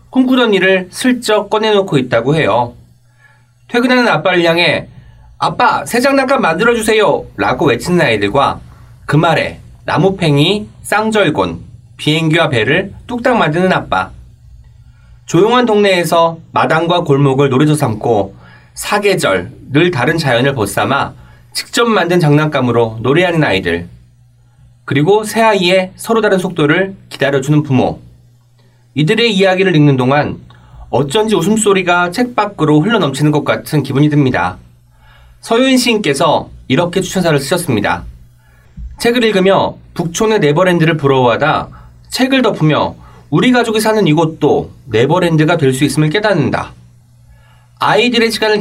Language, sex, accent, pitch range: Korean, male, native, 120-195 Hz